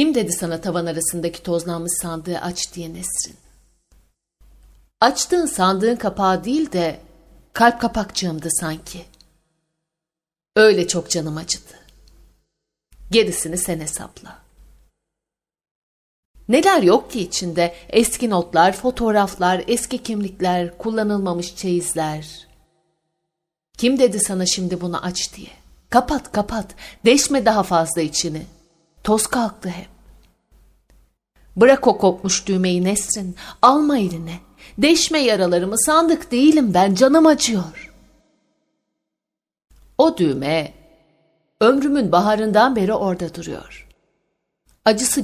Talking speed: 95 wpm